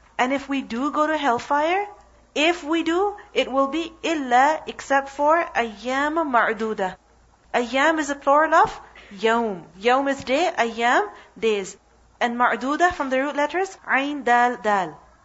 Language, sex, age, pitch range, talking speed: English, female, 40-59, 225-290 Hz, 150 wpm